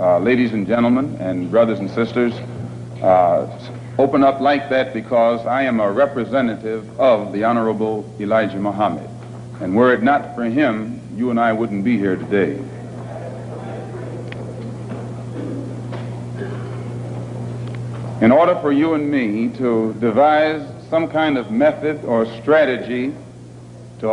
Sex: male